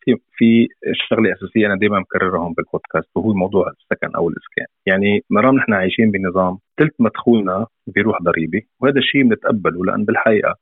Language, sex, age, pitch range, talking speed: Arabic, male, 30-49, 95-115 Hz, 145 wpm